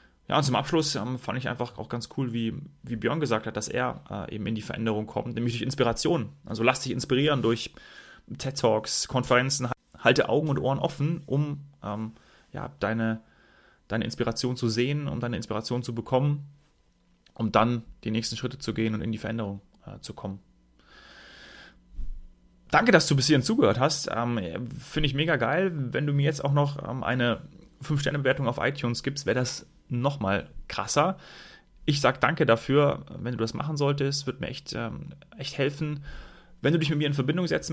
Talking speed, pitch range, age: 185 wpm, 115-145 Hz, 30-49